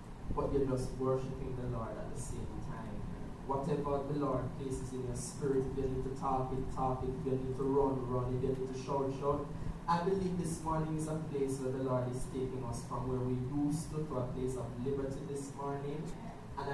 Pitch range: 130-155 Hz